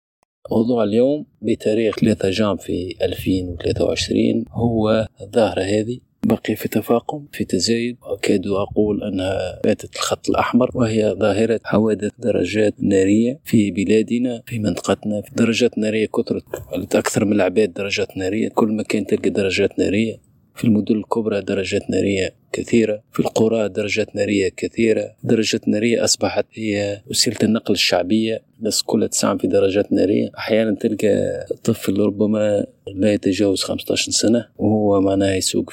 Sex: male